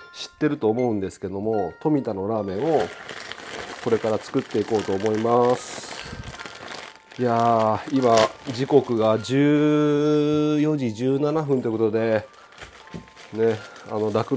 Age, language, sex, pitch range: 30-49, Japanese, male, 105-140 Hz